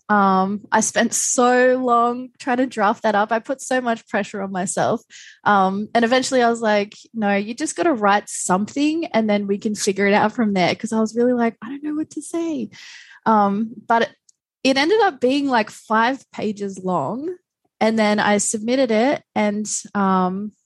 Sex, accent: female, Australian